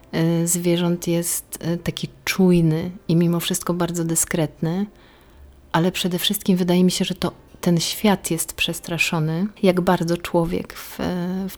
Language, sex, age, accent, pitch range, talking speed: Polish, female, 30-49, native, 170-185 Hz, 135 wpm